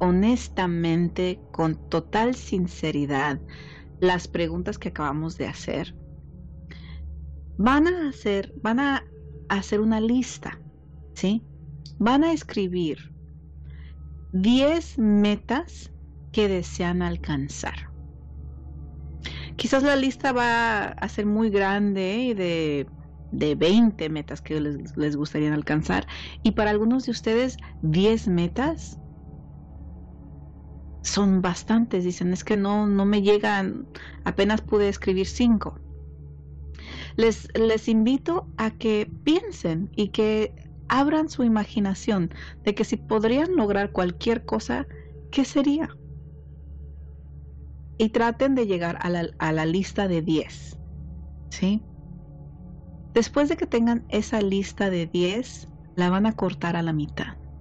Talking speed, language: 115 wpm, Spanish